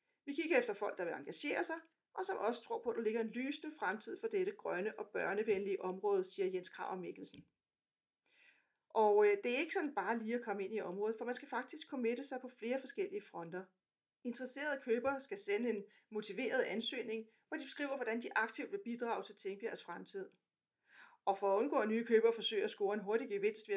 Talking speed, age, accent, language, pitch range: 210 wpm, 40-59, native, Danish, 220-305 Hz